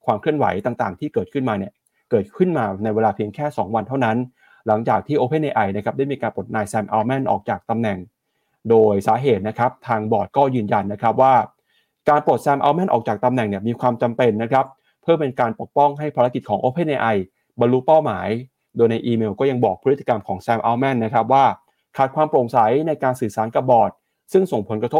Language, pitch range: Thai, 110-150 Hz